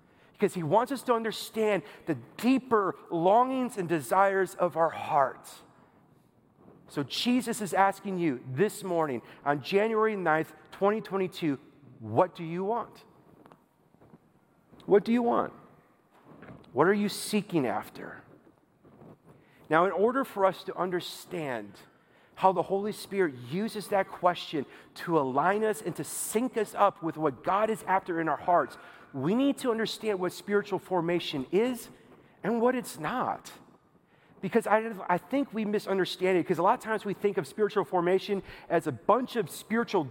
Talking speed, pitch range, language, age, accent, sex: 150 wpm, 170-215 Hz, English, 40-59, American, male